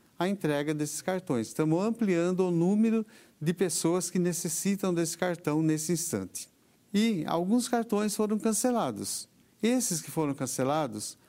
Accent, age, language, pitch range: Brazilian, 50-69, Portuguese, 150-190 Hz